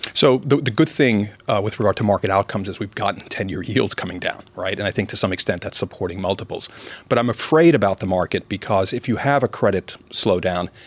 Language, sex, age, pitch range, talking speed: English, male, 40-59, 95-125 Hz, 225 wpm